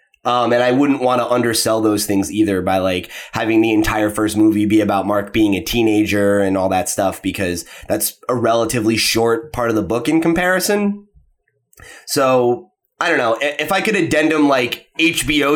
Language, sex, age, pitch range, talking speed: English, male, 20-39, 110-145 Hz, 185 wpm